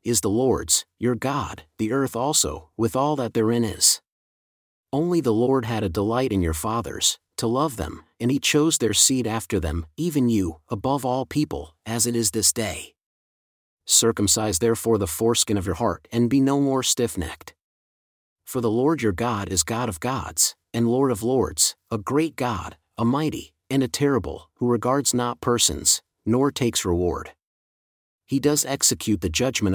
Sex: male